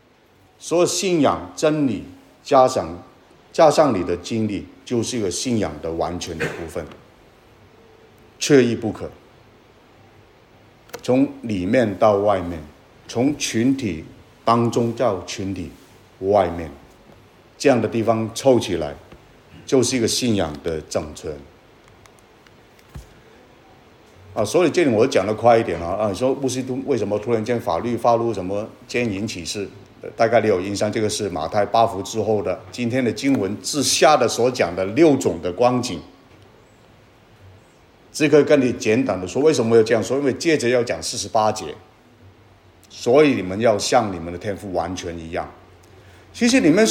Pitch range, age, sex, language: 95-135 Hz, 60-79, male, Chinese